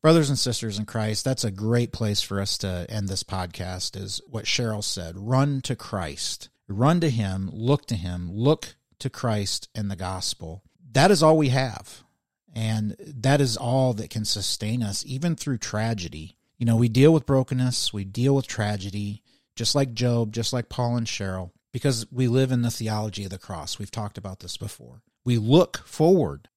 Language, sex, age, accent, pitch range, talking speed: English, male, 40-59, American, 100-130 Hz, 190 wpm